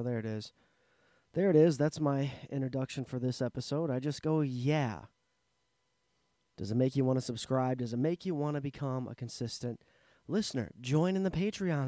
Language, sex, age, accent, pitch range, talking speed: English, male, 20-39, American, 125-160 Hz, 185 wpm